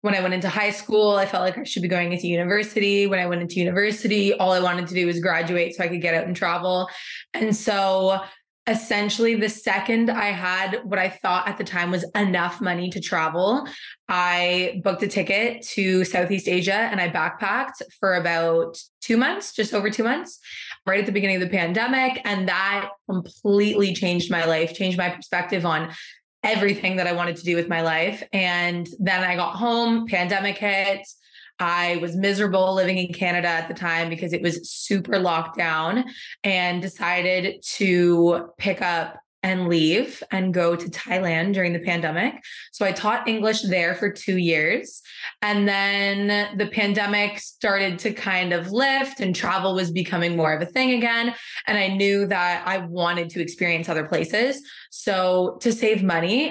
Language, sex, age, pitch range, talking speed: English, female, 20-39, 175-205 Hz, 185 wpm